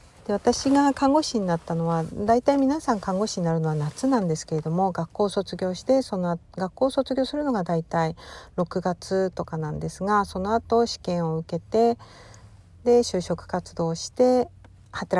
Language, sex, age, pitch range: Japanese, female, 50-69, 170-230 Hz